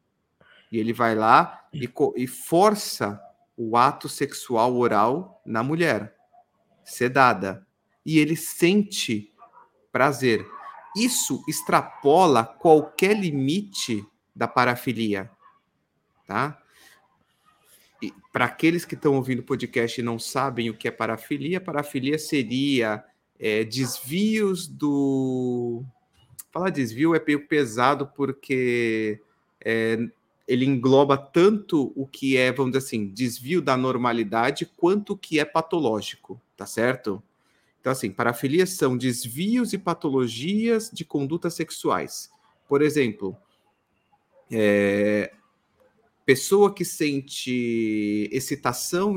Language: Portuguese